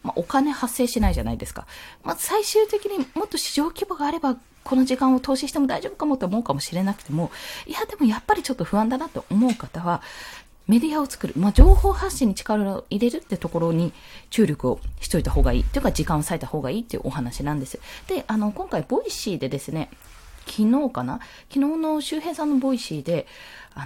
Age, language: 20-39, Japanese